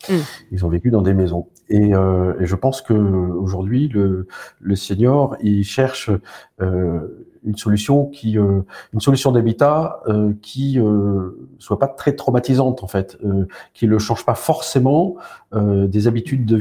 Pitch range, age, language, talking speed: 95-120 Hz, 40-59, French, 165 wpm